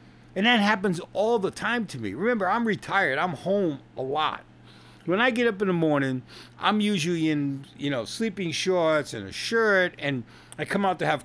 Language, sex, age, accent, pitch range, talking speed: English, male, 50-69, American, 115-185 Hz, 205 wpm